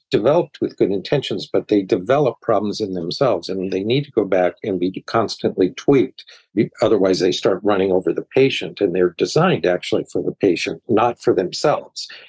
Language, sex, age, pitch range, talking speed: English, male, 50-69, 95-125 Hz, 180 wpm